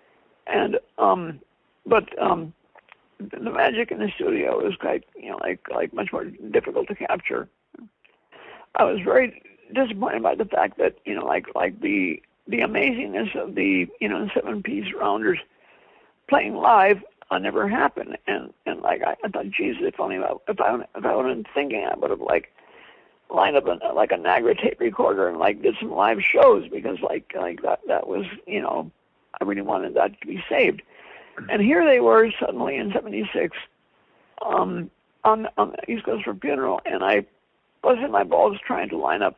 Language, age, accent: English, 60-79, American